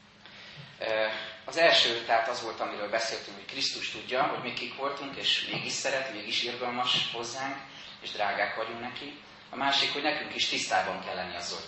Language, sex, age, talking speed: Hungarian, male, 30-49, 175 wpm